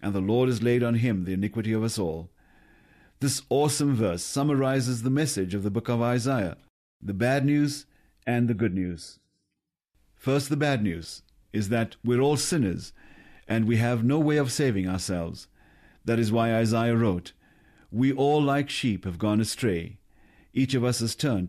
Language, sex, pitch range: English, male, 105-130 Hz